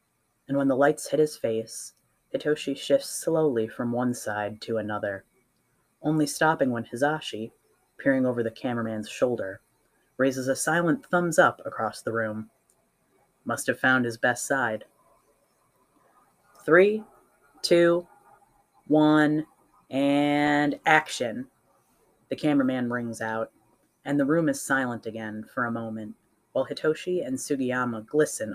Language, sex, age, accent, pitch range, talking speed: English, female, 30-49, American, 115-155 Hz, 130 wpm